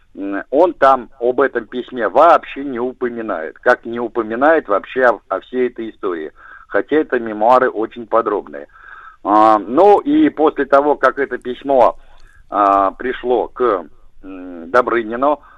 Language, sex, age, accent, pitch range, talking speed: Russian, male, 50-69, native, 110-150 Hz, 125 wpm